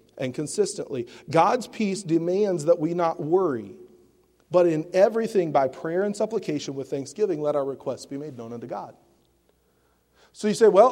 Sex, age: male, 40-59